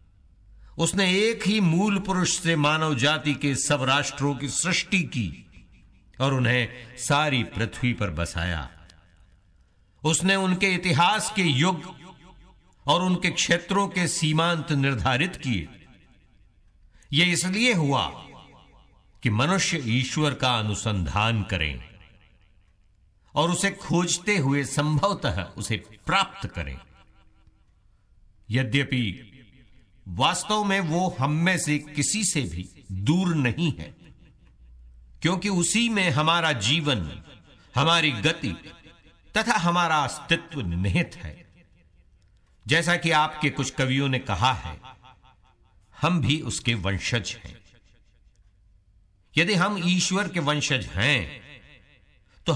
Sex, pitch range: male, 100-165 Hz